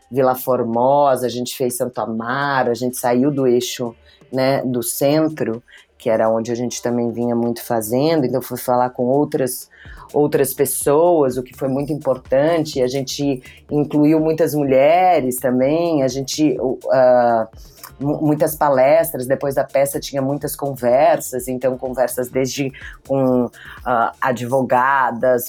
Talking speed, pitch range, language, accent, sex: 140 wpm, 125-140 Hz, Portuguese, Brazilian, female